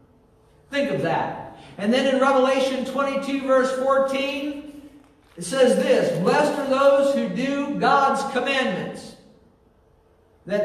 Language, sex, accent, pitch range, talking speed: English, male, American, 235-275 Hz, 120 wpm